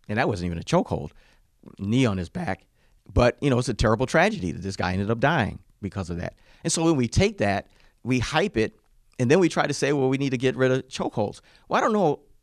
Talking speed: 255 wpm